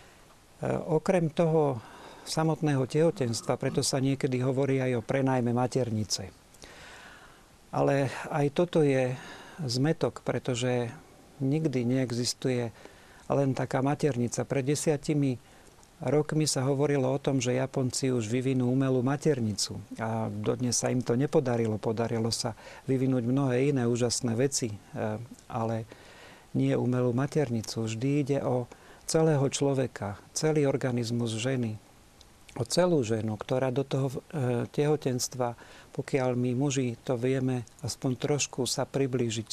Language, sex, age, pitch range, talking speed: Slovak, male, 50-69, 120-145 Hz, 115 wpm